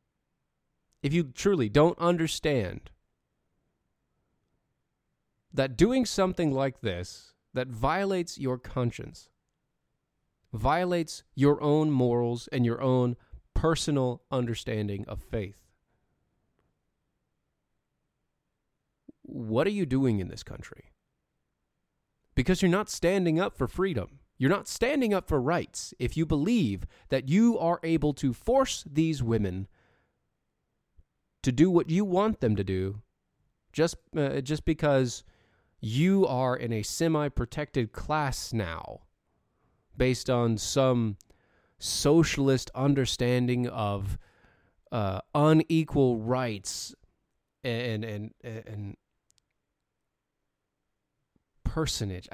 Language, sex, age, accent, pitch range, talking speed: English, male, 30-49, American, 110-160 Hz, 105 wpm